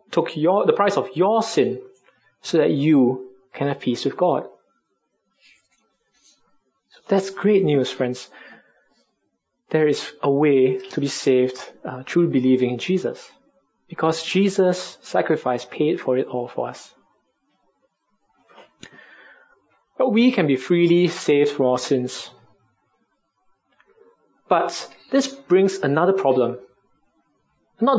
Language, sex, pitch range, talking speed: English, male, 135-215 Hz, 115 wpm